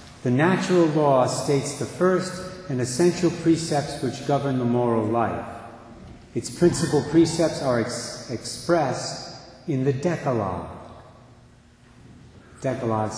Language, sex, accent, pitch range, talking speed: English, male, American, 115-150 Hz, 105 wpm